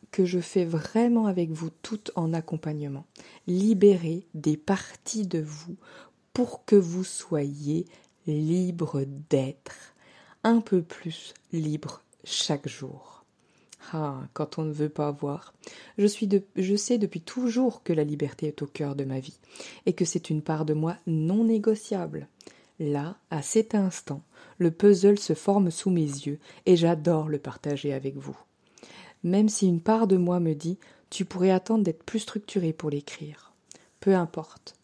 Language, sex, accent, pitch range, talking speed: French, female, French, 155-190 Hz, 160 wpm